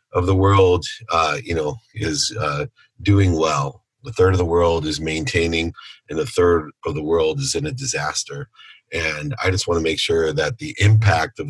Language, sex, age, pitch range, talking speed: English, male, 40-59, 85-140 Hz, 200 wpm